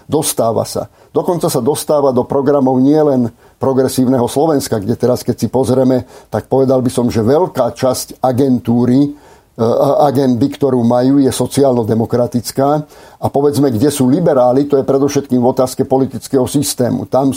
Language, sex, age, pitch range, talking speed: Slovak, male, 50-69, 125-140 Hz, 140 wpm